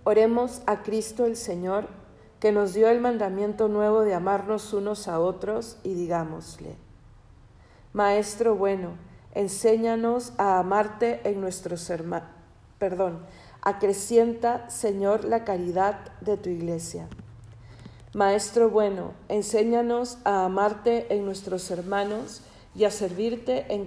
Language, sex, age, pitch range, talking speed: Spanish, female, 50-69, 180-220 Hz, 115 wpm